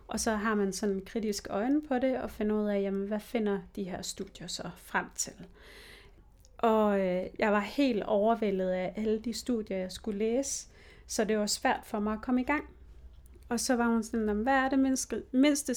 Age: 30-49